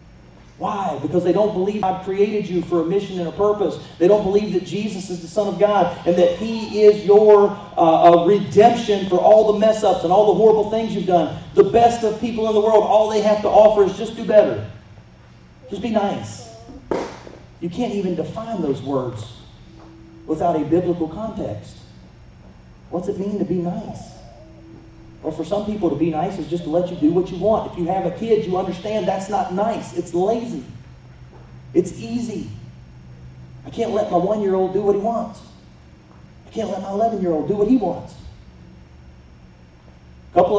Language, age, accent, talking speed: English, 40-59, American, 190 wpm